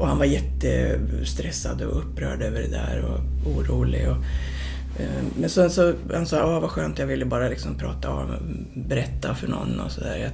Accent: native